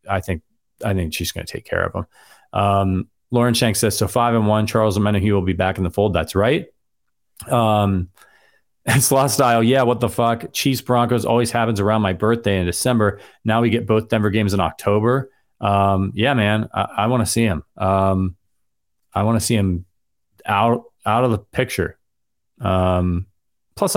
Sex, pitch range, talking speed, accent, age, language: male, 95-125 Hz, 190 wpm, American, 30-49, English